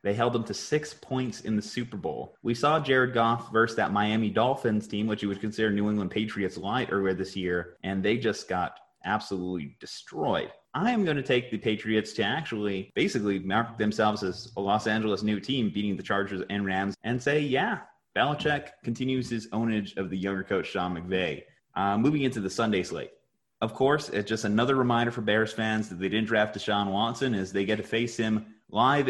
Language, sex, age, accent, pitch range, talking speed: English, male, 30-49, American, 100-125 Hz, 205 wpm